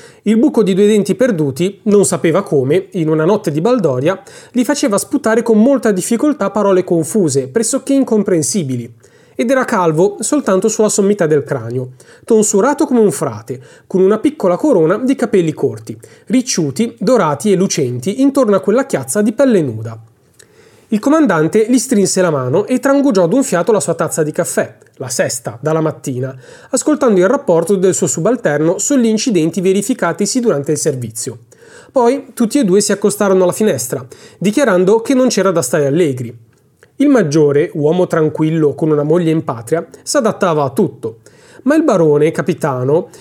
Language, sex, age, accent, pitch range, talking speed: Italian, male, 30-49, native, 155-225 Hz, 160 wpm